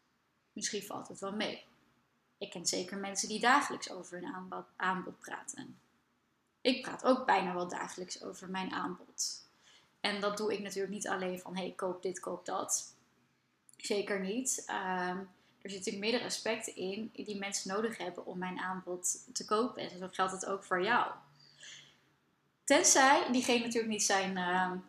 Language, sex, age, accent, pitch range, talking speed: Dutch, female, 20-39, Dutch, 195-245 Hz, 160 wpm